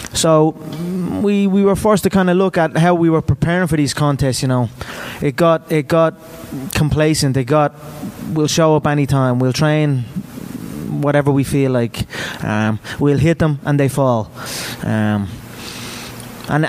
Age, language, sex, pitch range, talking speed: 20-39, English, male, 135-165 Hz, 165 wpm